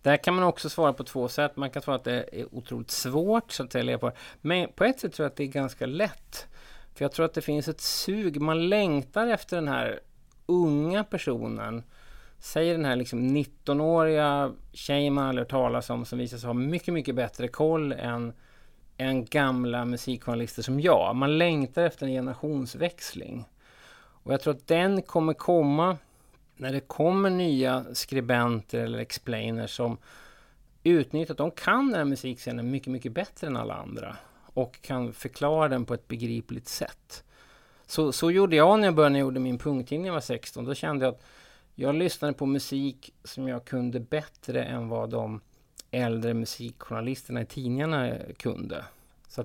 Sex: male